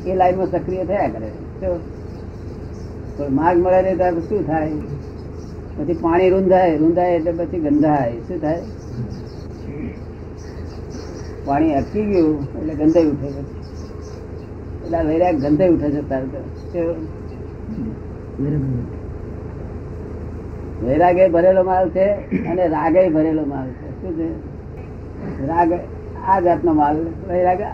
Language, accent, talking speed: Gujarati, native, 50 wpm